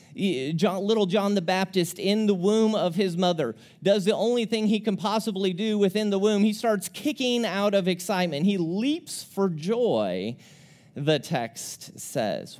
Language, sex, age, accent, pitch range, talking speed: English, male, 30-49, American, 160-200 Hz, 165 wpm